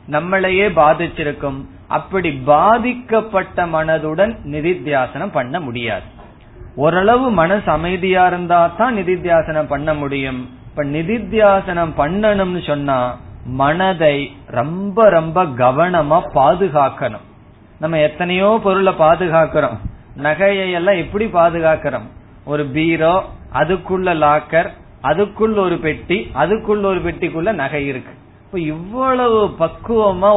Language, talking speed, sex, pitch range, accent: Tamil, 95 wpm, male, 145-195 Hz, native